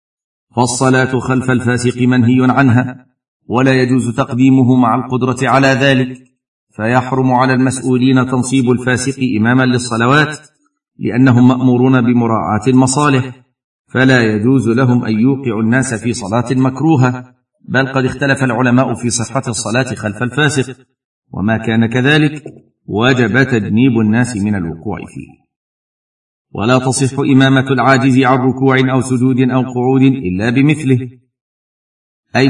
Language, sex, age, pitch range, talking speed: Arabic, male, 50-69, 120-135 Hz, 115 wpm